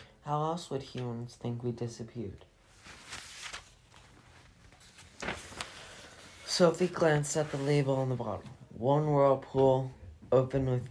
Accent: American